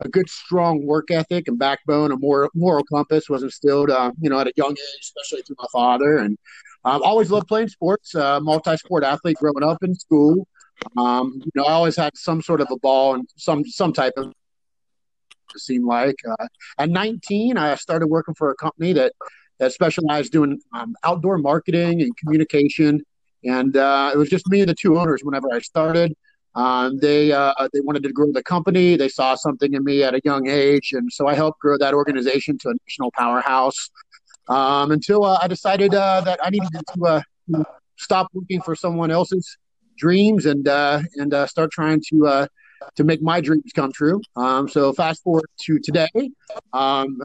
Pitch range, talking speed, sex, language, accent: 140-170 Hz, 195 wpm, male, English, American